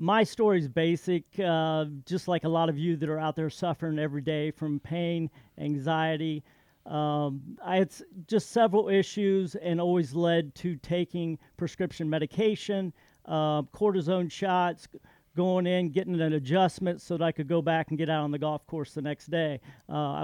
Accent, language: American, English